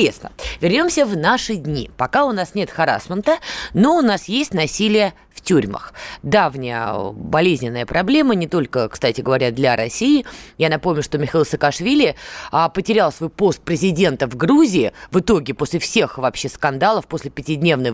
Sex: female